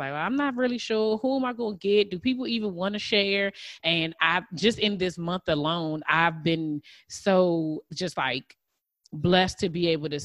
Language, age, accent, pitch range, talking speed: English, 20-39, American, 155-185 Hz, 195 wpm